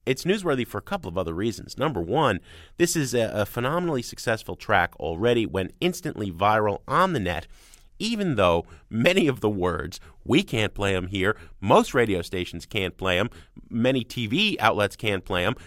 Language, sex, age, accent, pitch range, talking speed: English, male, 30-49, American, 95-150 Hz, 180 wpm